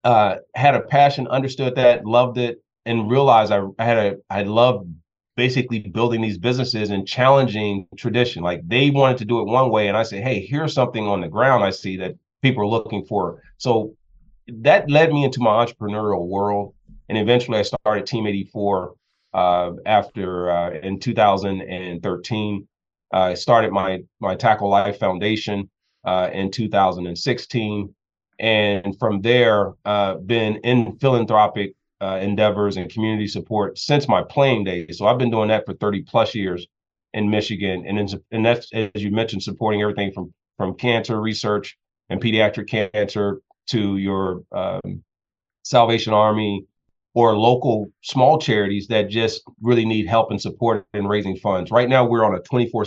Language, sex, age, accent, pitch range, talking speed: English, male, 30-49, American, 100-120 Hz, 165 wpm